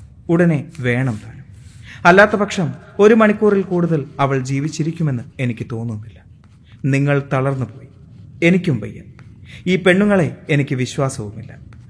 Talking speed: 100 wpm